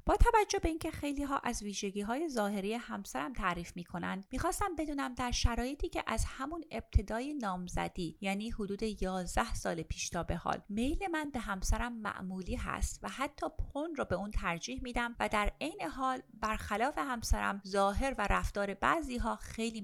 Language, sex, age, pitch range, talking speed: Persian, female, 30-49, 180-250 Hz, 170 wpm